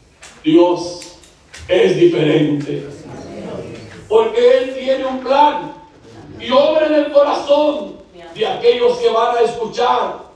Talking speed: 110 wpm